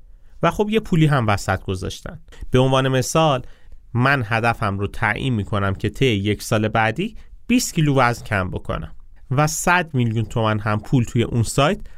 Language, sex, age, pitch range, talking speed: Persian, male, 30-49, 100-130 Hz, 170 wpm